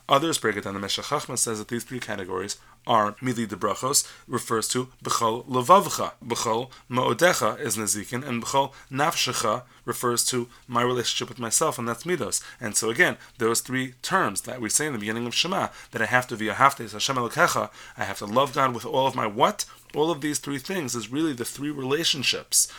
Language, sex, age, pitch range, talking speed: English, male, 30-49, 110-130 Hz, 200 wpm